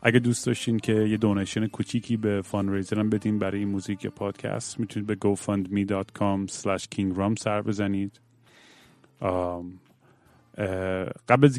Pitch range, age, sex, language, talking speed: 100-120 Hz, 30-49, male, Persian, 115 wpm